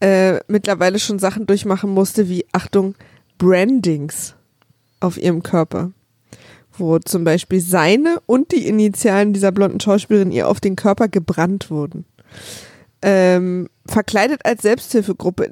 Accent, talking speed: German, 125 wpm